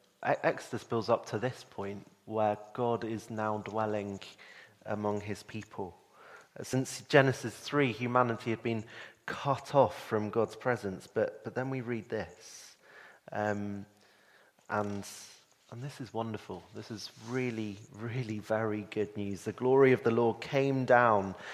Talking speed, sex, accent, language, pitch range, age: 140 wpm, male, British, English, 105-125 Hz, 30-49